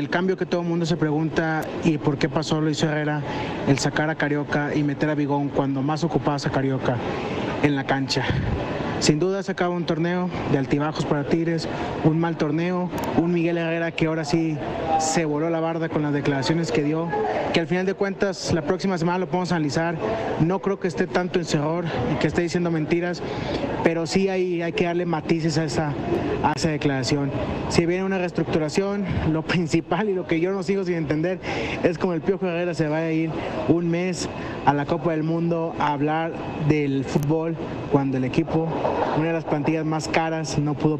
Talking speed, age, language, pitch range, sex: 200 wpm, 30-49, Spanish, 145-175 Hz, male